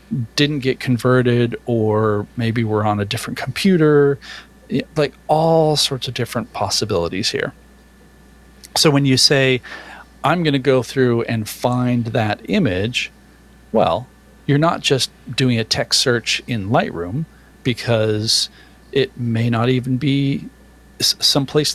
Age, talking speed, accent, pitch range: 40-59, 125 wpm, American, 115-140 Hz